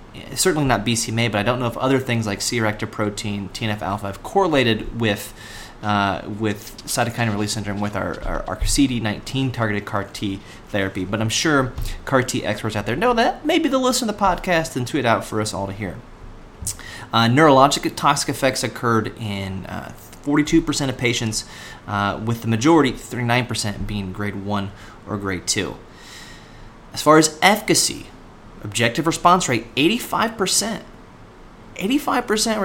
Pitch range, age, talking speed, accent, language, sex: 105-140 Hz, 30-49, 150 wpm, American, English, male